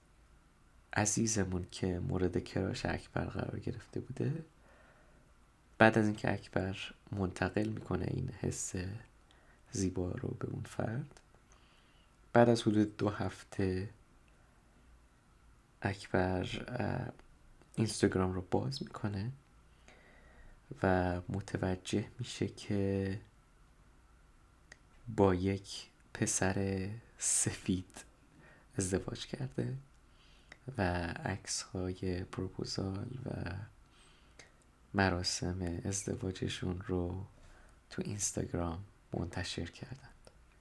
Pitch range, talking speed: 90-120 Hz, 80 wpm